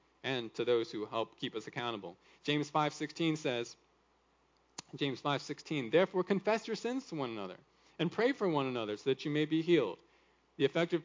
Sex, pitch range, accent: male, 135-190 Hz, American